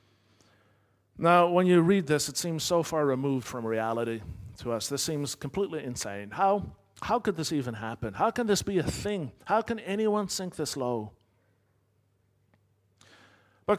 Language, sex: English, male